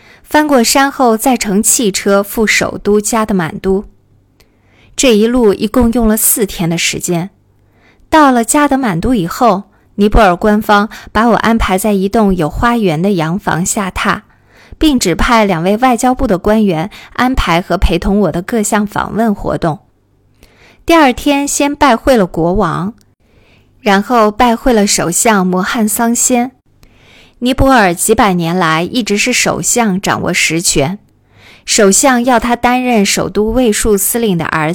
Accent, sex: native, female